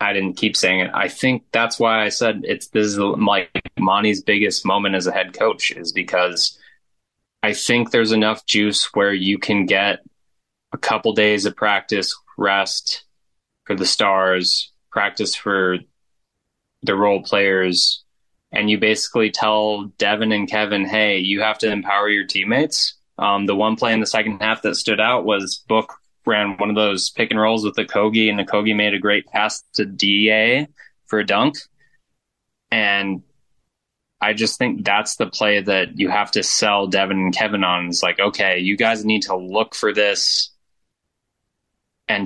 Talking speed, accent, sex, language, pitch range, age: 175 wpm, American, male, English, 95-110 Hz, 20-39